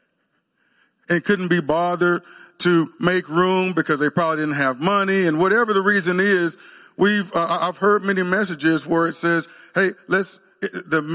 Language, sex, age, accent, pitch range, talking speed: English, male, 40-59, American, 155-185 Hz, 160 wpm